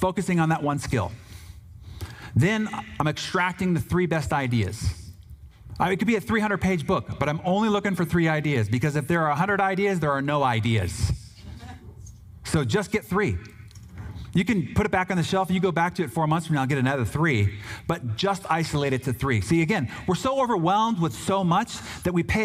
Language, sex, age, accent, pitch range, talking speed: English, male, 40-59, American, 105-170 Hz, 205 wpm